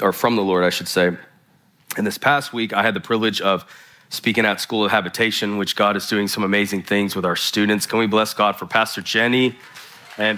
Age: 30-49